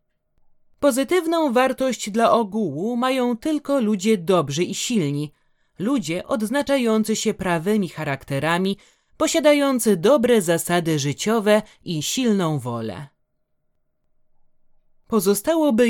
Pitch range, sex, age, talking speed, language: 170-240 Hz, male, 30-49, 85 wpm, Polish